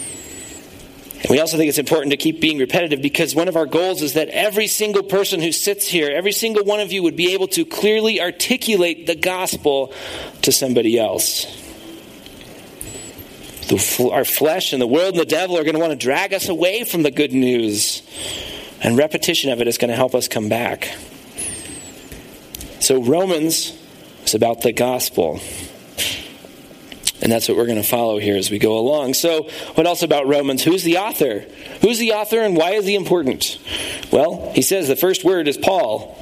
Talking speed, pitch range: 185 wpm, 145-210 Hz